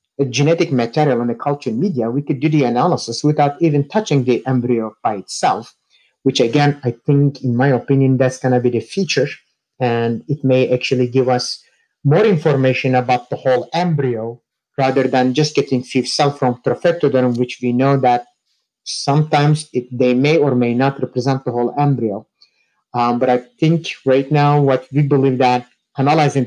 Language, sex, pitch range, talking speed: English, male, 125-145 Hz, 175 wpm